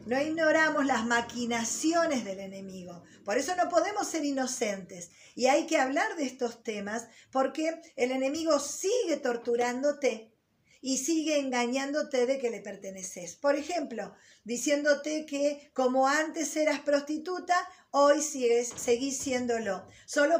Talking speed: 130 wpm